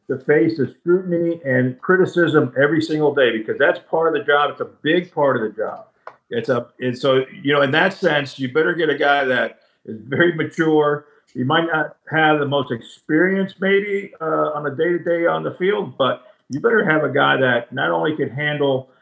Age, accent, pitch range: 50-69, American, 130-155 Hz